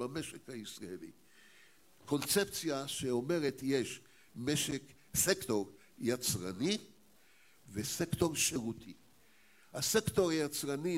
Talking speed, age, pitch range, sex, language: 65 wpm, 60-79, 135-185 Hz, male, Hebrew